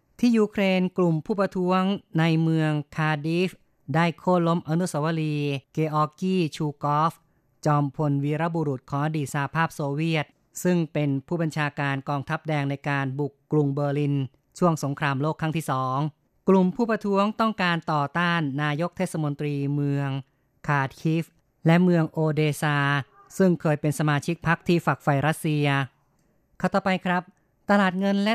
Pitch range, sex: 145-165 Hz, female